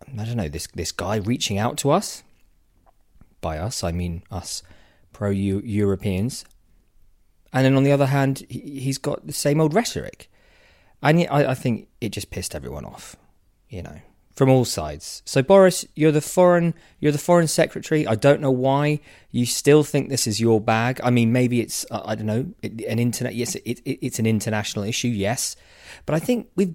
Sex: male